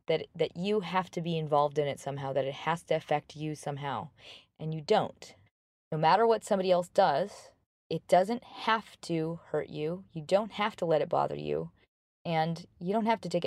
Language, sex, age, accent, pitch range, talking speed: English, female, 20-39, American, 155-200 Hz, 205 wpm